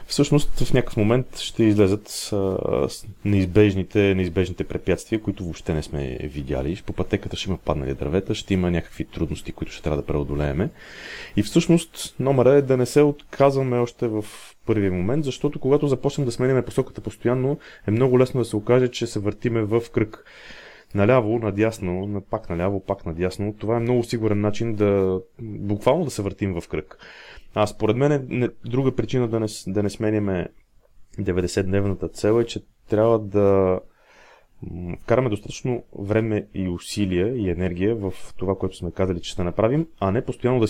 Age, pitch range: 30-49, 95-120 Hz